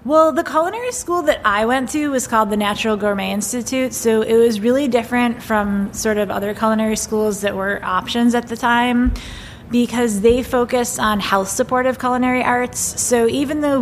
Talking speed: 180 wpm